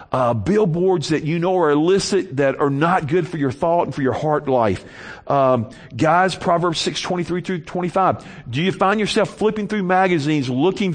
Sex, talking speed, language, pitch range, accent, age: male, 180 wpm, English, 140-185 Hz, American, 50-69